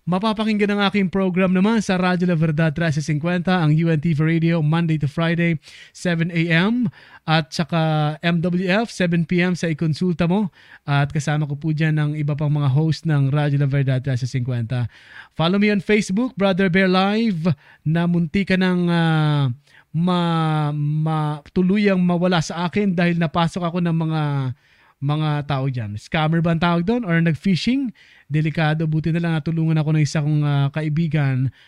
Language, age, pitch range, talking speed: Filipino, 20-39, 145-185 Hz, 155 wpm